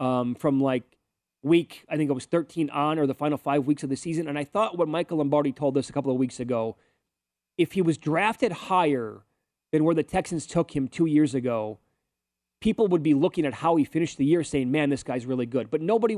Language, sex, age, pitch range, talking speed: English, male, 30-49, 130-170 Hz, 235 wpm